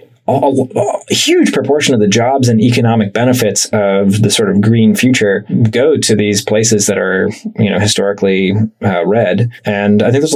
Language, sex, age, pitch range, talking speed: English, male, 20-39, 110-130 Hz, 175 wpm